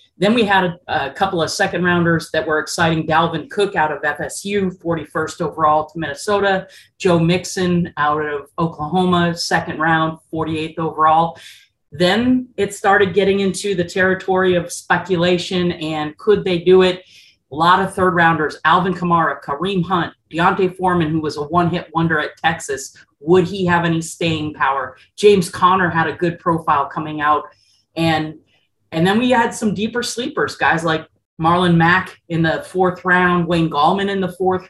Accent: American